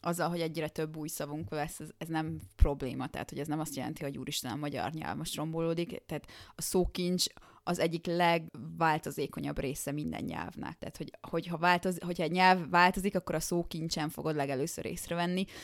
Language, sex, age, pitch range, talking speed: Hungarian, female, 20-39, 155-185 Hz, 180 wpm